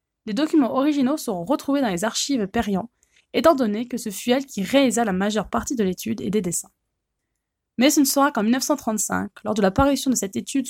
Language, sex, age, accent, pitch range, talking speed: French, female, 20-39, French, 205-270 Hz, 210 wpm